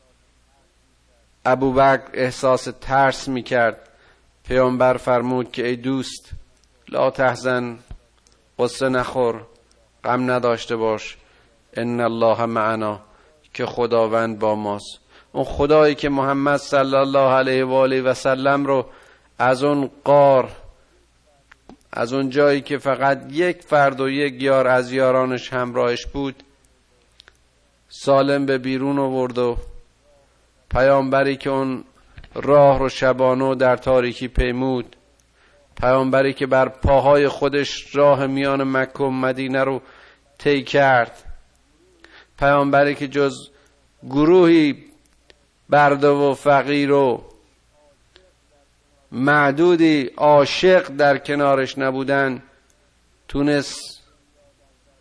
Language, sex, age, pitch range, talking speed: Persian, male, 50-69, 125-140 Hz, 100 wpm